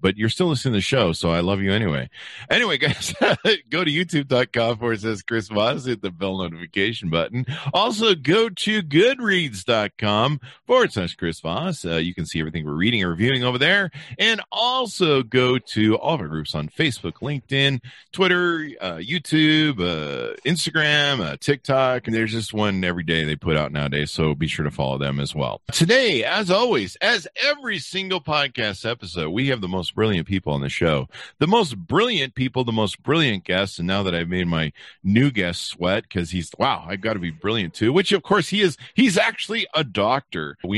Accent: American